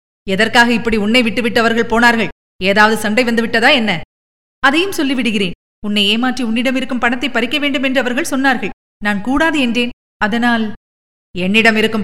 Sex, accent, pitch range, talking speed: female, native, 205-275 Hz, 140 wpm